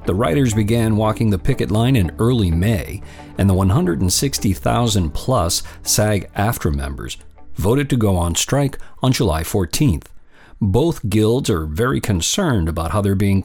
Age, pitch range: 50-69, 90-130 Hz